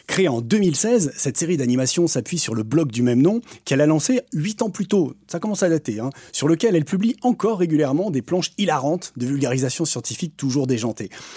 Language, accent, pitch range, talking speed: French, French, 130-185 Hz, 205 wpm